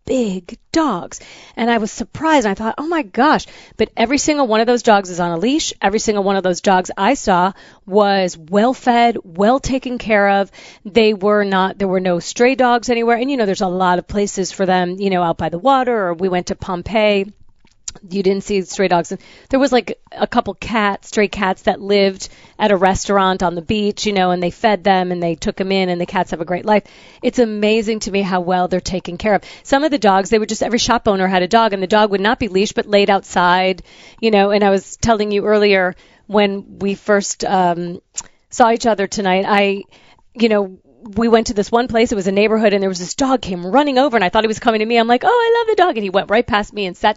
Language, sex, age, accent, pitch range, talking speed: English, female, 30-49, American, 190-230 Hz, 255 wpm